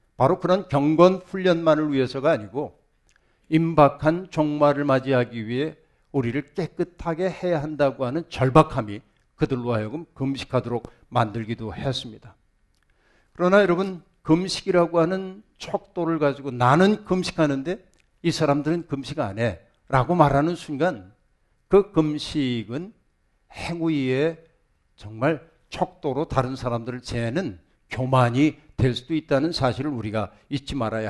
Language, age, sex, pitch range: Korean, 60-79, male, 125-165 Hz